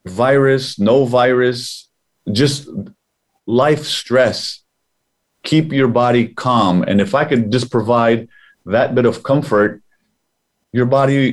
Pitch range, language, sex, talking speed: 115-140 Hz, English, male, 115 wpm